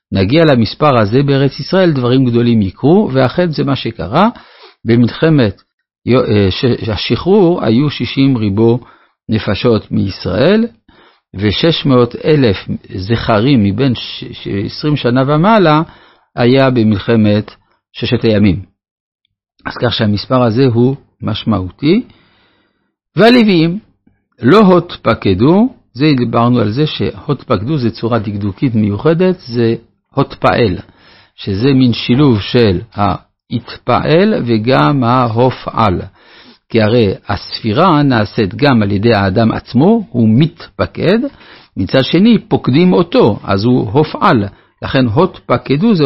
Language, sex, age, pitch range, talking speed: Hebrew, male, 50-69, 110-150 Hz, 100 wpm